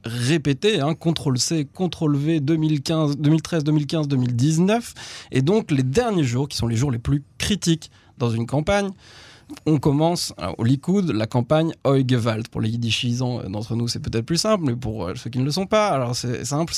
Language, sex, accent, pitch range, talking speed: French, male, French, 120-155 Hz, 175 wpm